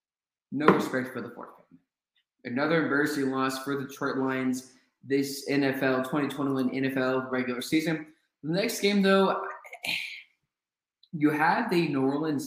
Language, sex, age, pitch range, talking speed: English, male, 20-39, 135-170 Hz, 135 wpm